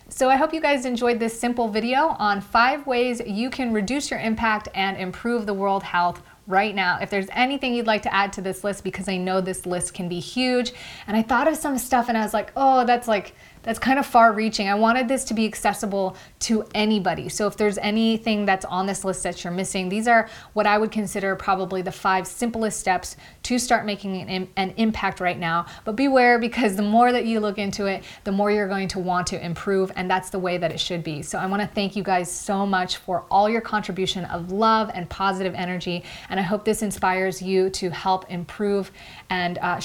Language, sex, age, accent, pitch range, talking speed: English, female, 30-49, American, 185-225 Hz, 230 wpm